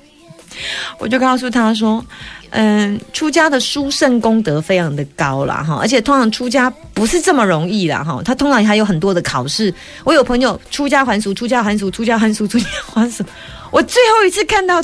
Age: 30-49